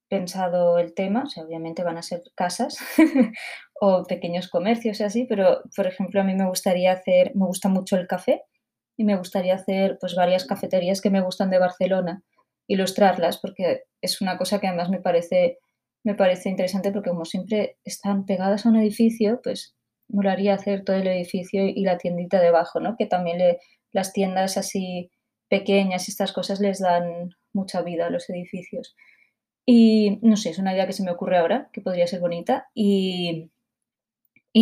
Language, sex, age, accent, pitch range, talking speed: Spanish, female, 20-39, Spanish, 185-210 Hz, 185 wpm